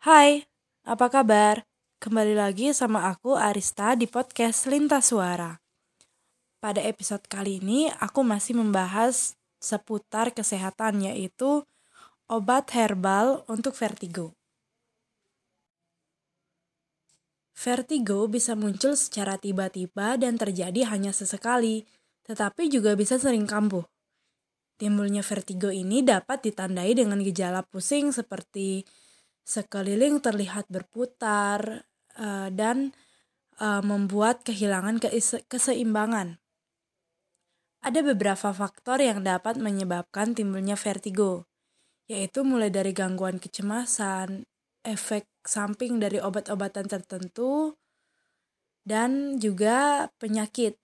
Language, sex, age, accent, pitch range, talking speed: Indonesian, female, 20-39, native, 195-245 Hz, 90 wpm